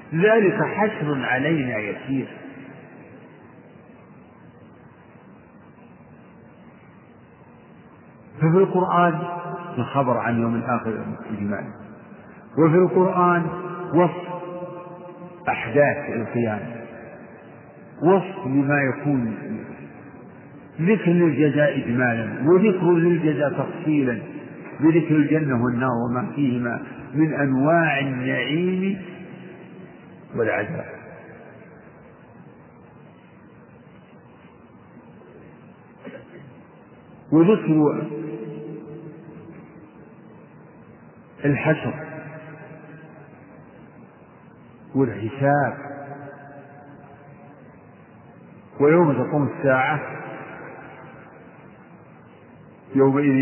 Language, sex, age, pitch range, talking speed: Arabic, male, 50-69, 130-175 Hz, 45 wpm